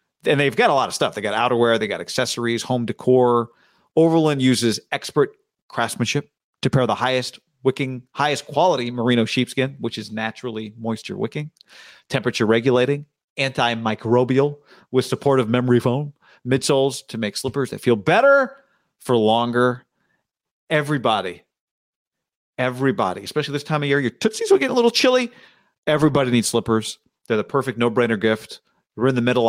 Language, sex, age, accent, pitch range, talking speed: English, male, 40-59, American, 120-150 Hz, 155 wpm